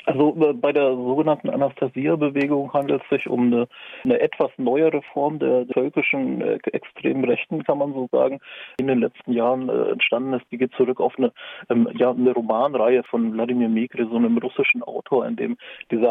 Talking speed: 185 wpm